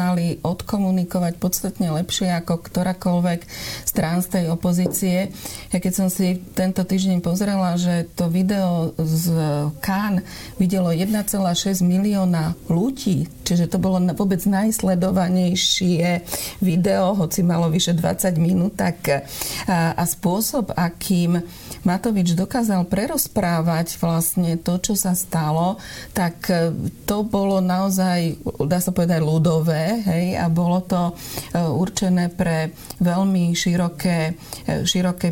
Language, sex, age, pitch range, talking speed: Slovak, female, 40-59, 170-190 Hz, 115 wpm